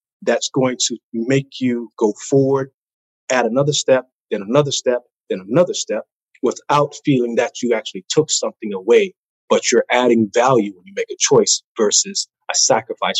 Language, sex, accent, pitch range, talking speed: English, male, American, 120-145 Hz, 165 wpm